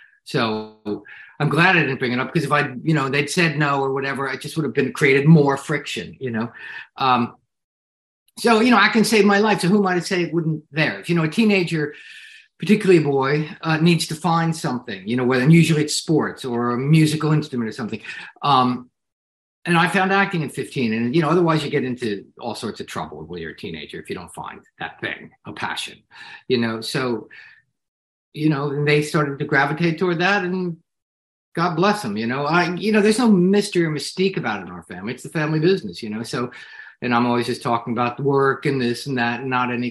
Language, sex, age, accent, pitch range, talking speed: English, male, 50-69, American, 125-175 Hz, 230 wpm